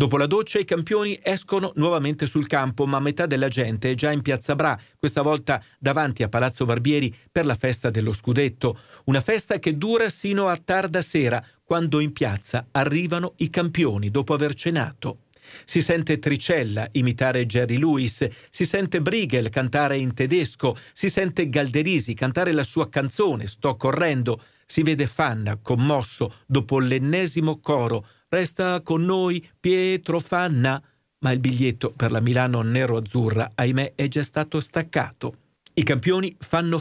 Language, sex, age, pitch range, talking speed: Italian, male, 40-59, 125-165 Hz, 155 wpm